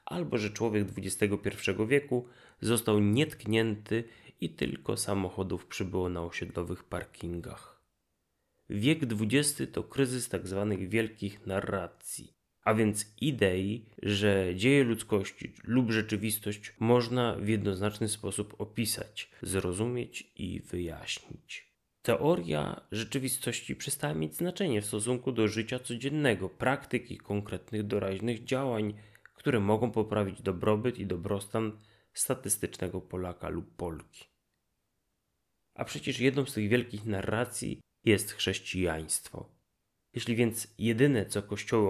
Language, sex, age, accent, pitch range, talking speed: Polish, male, 30-49, native, 100-120 Hz, 110 wpm